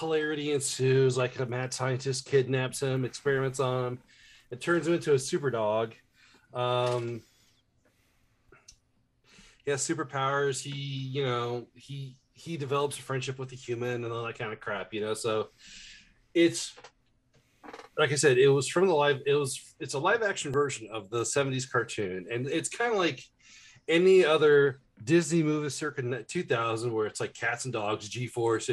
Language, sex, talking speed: English, male, 165 wpm